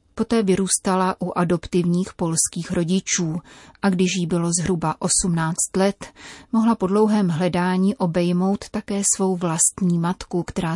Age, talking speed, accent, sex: 30-49, 130 wpm, native, female